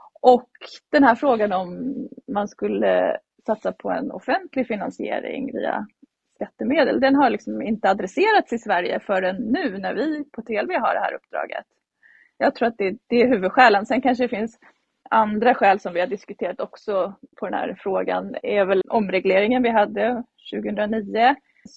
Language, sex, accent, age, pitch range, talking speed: Swedish, female, native, 30-49, 195-245 Hz, 165 wpm